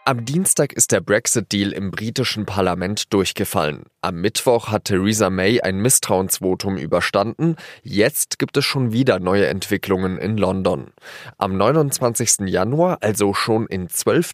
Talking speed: 140 wpm